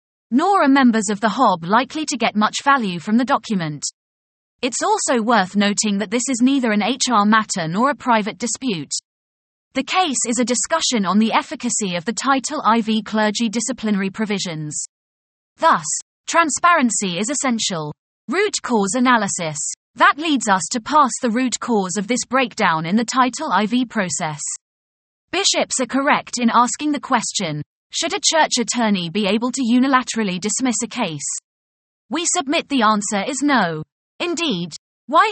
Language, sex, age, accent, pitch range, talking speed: English, female, 30-49, British, 200-260 Hz, 160 wpm